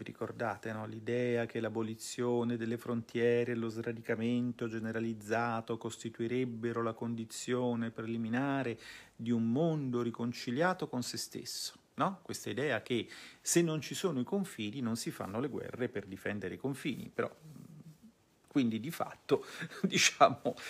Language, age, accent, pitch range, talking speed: Italian, 40-59, native, 115-140 Hz, 135 wpm